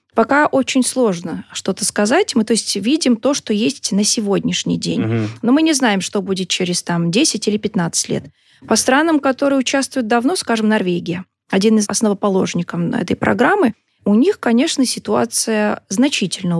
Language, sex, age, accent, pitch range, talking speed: Russian, female, 30-49, native, 195-250 Hz, 150 wpm